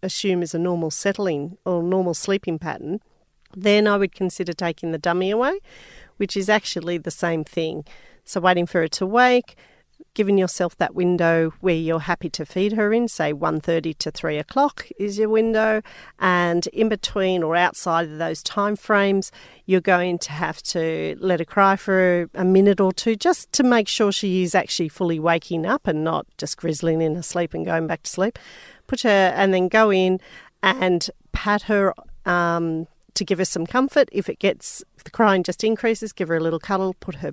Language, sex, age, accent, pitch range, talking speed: English, female, 40-59, Australian, 165-200 Hz, 195 wpm